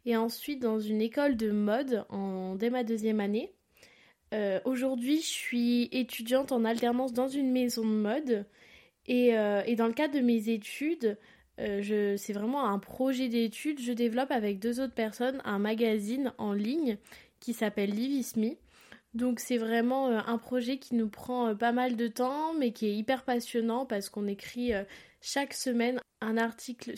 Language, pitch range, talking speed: French, 220-255 Hz, 170 wpm